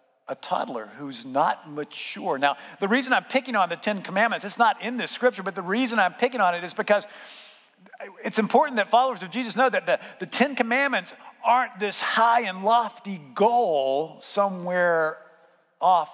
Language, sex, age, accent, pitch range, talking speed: English, male, 50-69, American, 175-235 Hz, 180 wpm